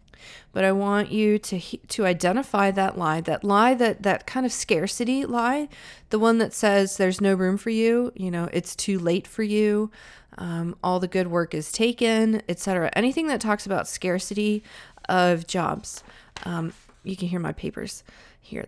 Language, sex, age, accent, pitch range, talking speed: English, female, 30-49, American, 180-220 Hz, 180 wpm